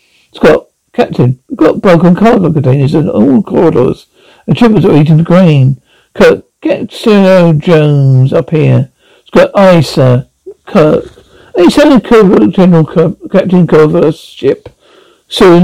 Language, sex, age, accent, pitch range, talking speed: English, male, 60-79, British, 150-220 Hz, 140 wpm